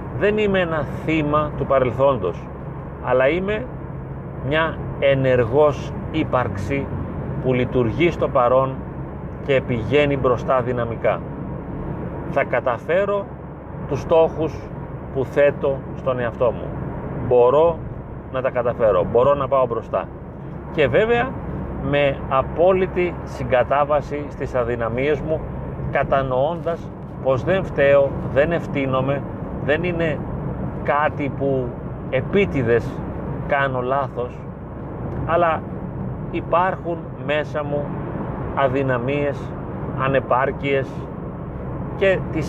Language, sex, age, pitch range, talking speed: Greek, male, 40-59, 130-150 Hz, 90 wpm